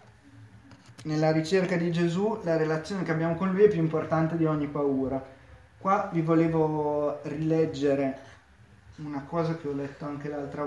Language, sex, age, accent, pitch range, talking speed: Italian, male, 30-49, native, 135-160 Hz, 150 wpm